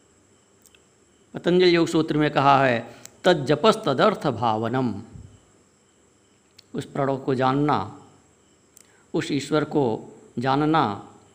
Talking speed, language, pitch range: 90 wpm, Hindi, 110-160 Hz